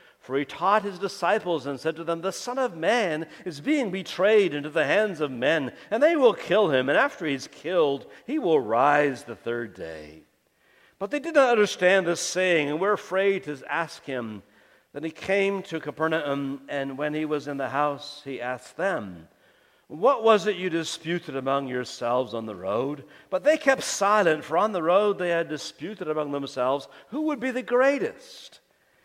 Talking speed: 190 wpm